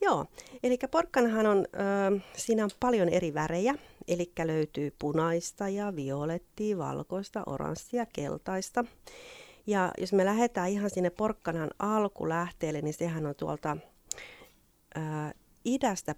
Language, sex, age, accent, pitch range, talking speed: Finnish, female, 40-59, native, 150-200 Hz, 120 wpm